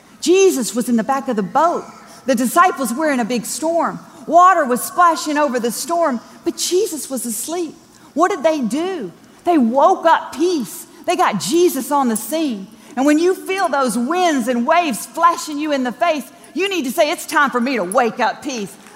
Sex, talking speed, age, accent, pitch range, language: female, 205 wpm, 40-59, American, 235-330 Hz, English